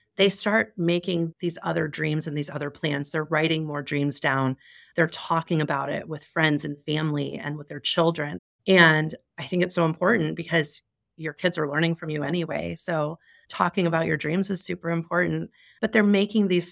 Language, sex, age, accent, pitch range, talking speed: English, female, 30-49, American, 155-190 Hz, 190 wpm